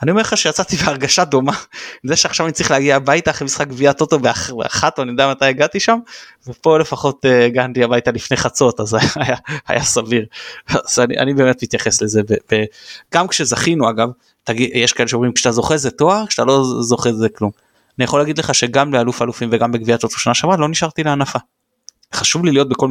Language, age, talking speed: Hebrew, 20-39, 205 wpm